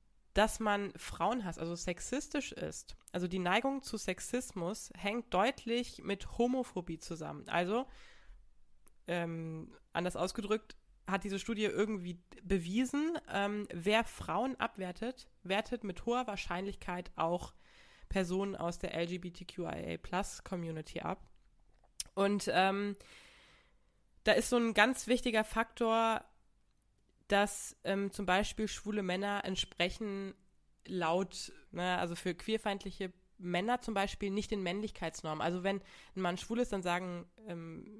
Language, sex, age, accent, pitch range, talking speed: German, female, 20-39, German, 180-215 Hz, 120 wpm